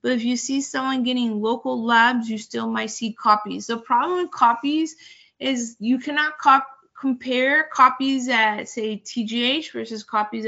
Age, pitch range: 20-39, 225-280 Hz